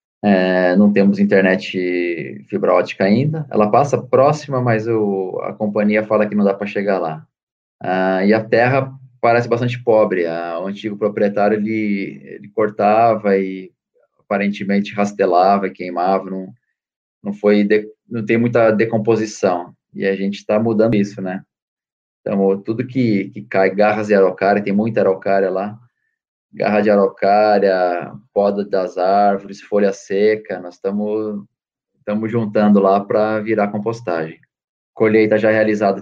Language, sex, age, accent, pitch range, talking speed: Portuguese, male, 20-39, Brazilian, 100-115 Hz, 140 wpm